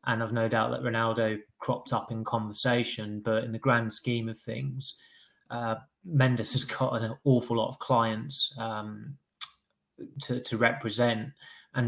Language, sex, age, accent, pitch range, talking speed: English, male, 20-39, British, 110-120 Hz, 155 wpm